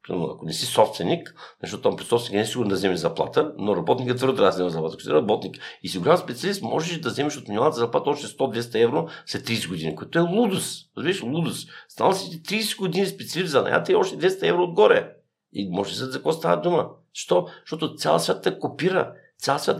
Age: 50-69